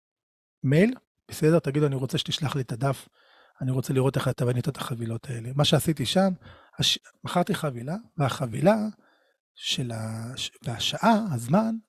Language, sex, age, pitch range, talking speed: Hebrew, male, 40-59, 125-180 Hz, 150 wpm